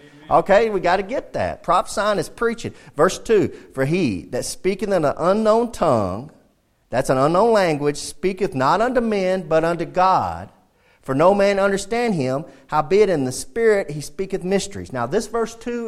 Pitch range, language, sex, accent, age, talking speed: 150-225 Hz, English, male, American, 40-59, 180 wpm